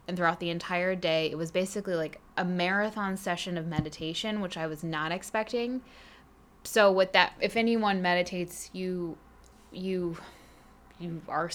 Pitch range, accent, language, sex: 165-205 Hz, American, English, female